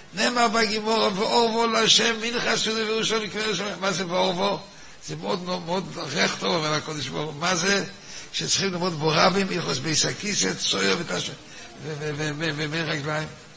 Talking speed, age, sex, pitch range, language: 125 wpm, 60-79, male, 145-190 Hz, Hebrew